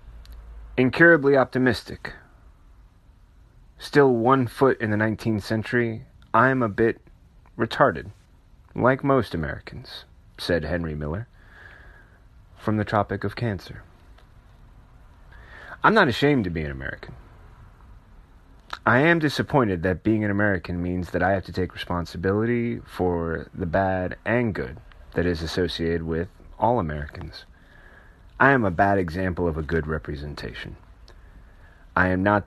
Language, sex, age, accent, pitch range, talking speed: English, male, 30-49, American, 85-115 Hz, 130 wpm